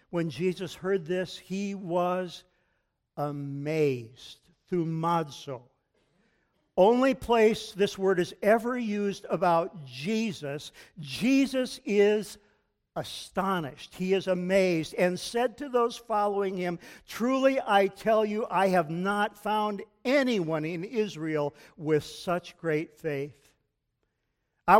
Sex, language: male, English